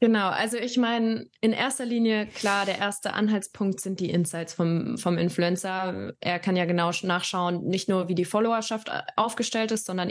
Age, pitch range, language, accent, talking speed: 20-39, 180-215 Hz, German, German, 180 wpm